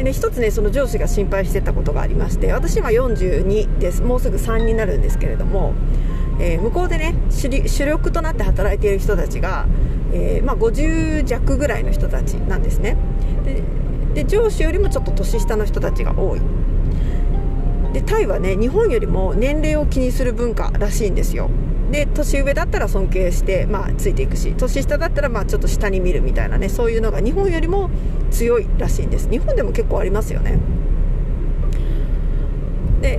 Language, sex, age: Japanese, female, 40-59